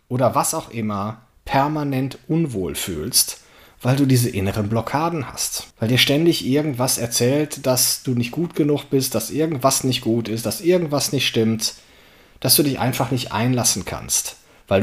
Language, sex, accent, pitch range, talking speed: German, male, German, 110-150 Hz, 165 wpm